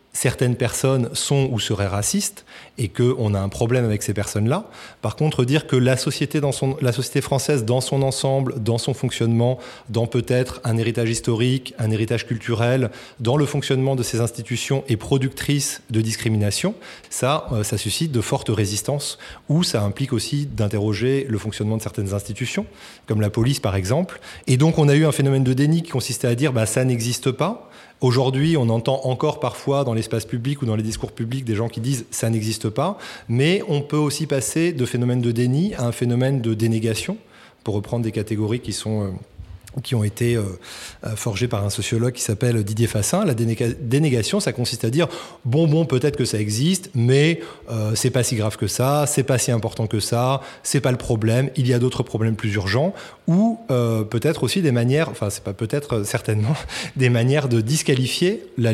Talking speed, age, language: 195 wpm, 30-49, French